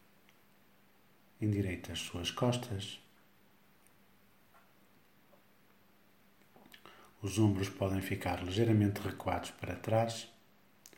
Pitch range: 95-110 Hz